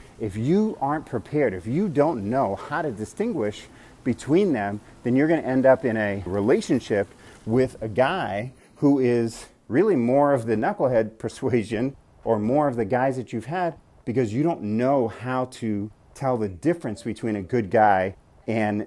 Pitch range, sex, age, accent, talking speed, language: 105-130 Hz, male, 40-59, American, 170 wpm, English